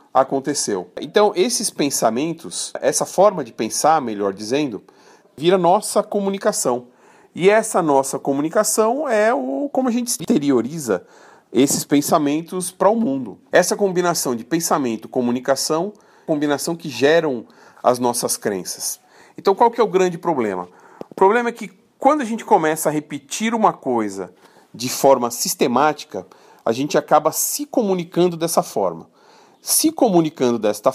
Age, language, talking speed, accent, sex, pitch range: 40-59, Portuguese, 140 wpm, Brazilian, male, 140-220 Hz